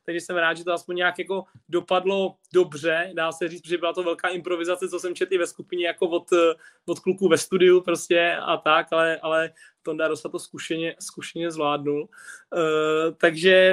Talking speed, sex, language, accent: 190 wpm, male, Czech, native